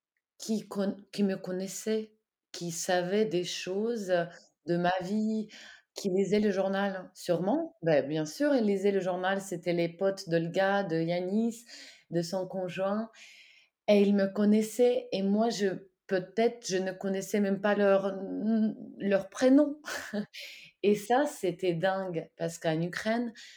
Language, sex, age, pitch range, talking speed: French, female, 30-49, 175-215 Hz, 135 wpm